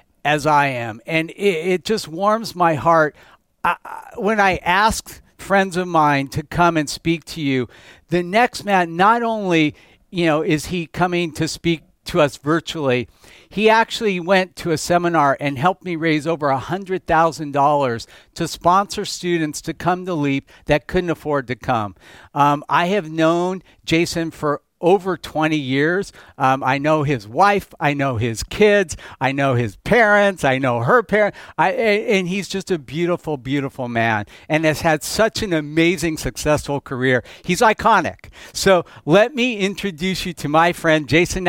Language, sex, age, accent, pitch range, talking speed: English, male, 60-79, American, 145-185 Hz, 170 wpm